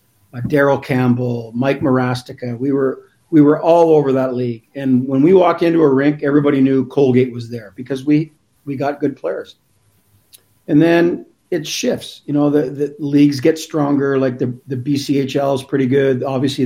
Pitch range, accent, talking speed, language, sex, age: 125-145 Hz, American, 180 wpm, English, male, 50-69